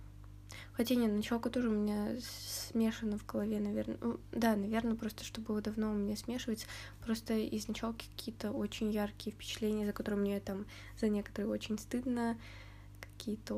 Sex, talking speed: female, 150 wpm